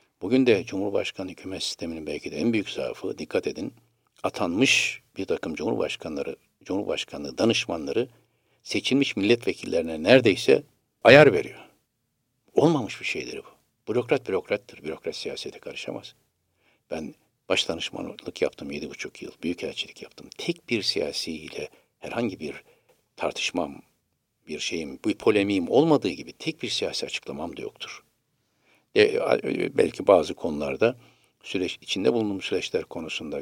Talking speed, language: 120 wpm, Turkish